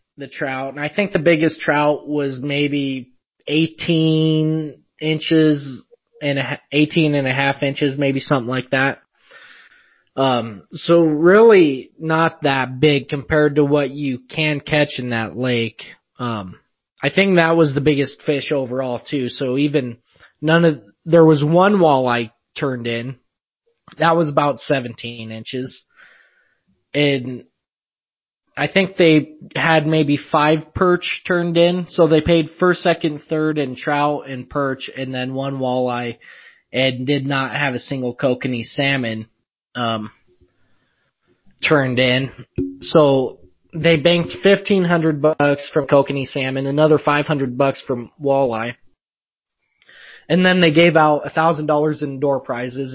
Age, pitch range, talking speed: 20-39, 130-155 Hz, 140 wpm